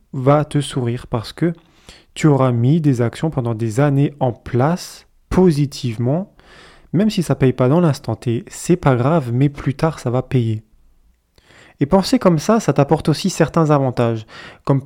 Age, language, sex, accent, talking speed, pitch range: 20-39, French, male, French, 180 wpm, 125-165 Hz